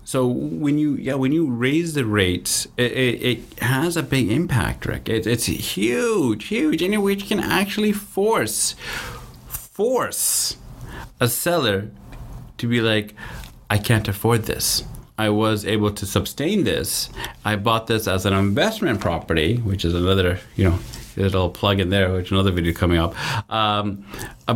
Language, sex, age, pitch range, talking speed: English, male, 30-49, 100-135 Hz, 160 wpm